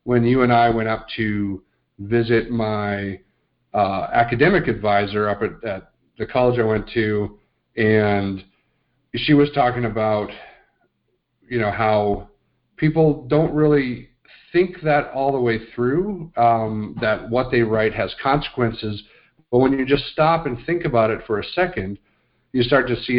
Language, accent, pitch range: English, American, 105-125 Hz